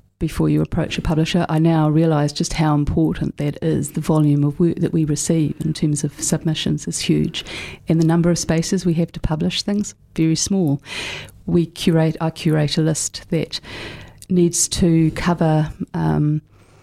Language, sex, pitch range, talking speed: English, female, 150-170 Hz, 175 wpm